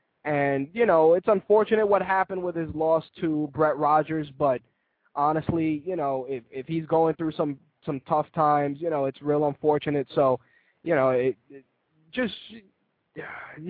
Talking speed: 160 wpm